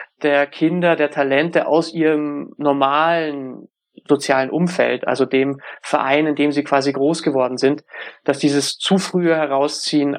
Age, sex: 30-49, male